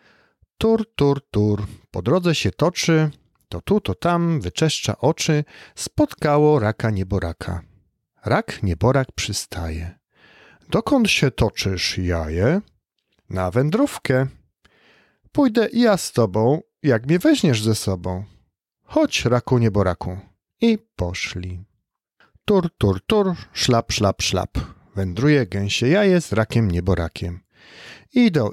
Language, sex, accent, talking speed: Polish, male, native, 110 wpm